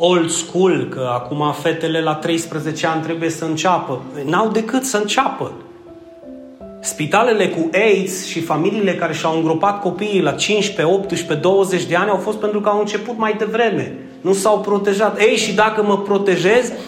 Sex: male